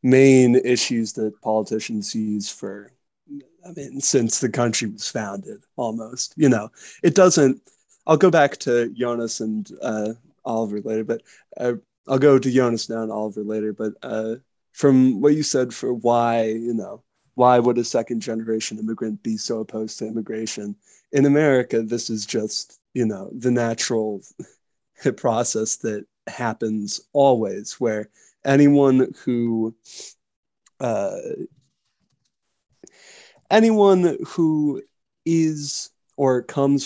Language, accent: English, American